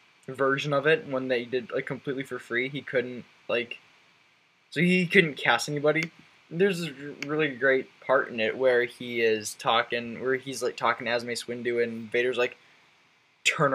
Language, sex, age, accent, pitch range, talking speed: English, male, 10-29, American, 120-155 Hz, 175 wpm